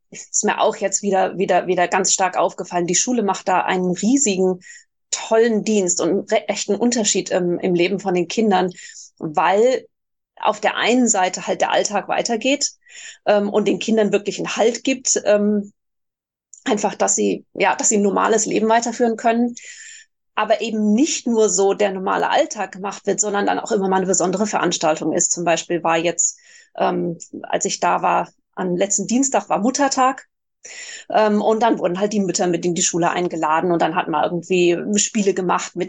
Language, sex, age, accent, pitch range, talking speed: German, female, 30-49, German, 185-230 Hz, 185 wpm